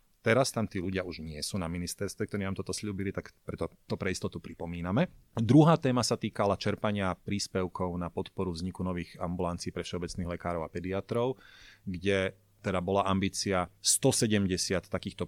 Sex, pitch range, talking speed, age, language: male, 90-105 Hz, 165 wpm, 30-49, Slovak